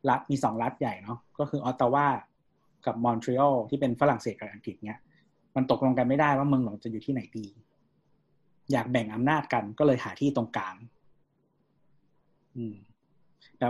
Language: Thai